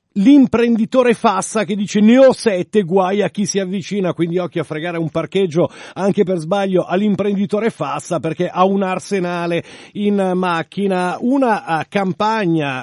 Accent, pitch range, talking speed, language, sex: native, 160-205 Hz, 145 wpm, Italian, male